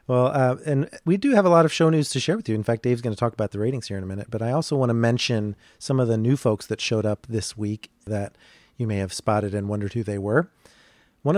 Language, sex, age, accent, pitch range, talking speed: English, male, 30-49, American, 105-135 Hz, 290 wpm